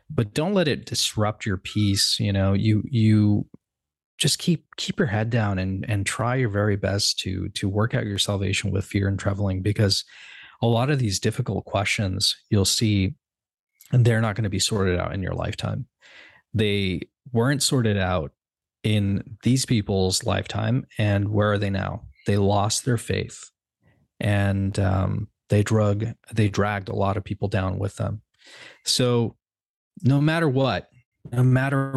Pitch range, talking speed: 100-120 Hz, 165 wpm